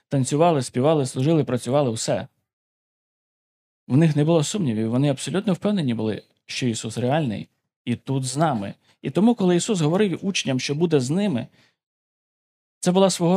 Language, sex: Ukrainian, male